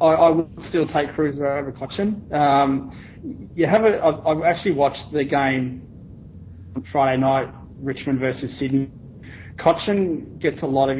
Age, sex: 30-49, male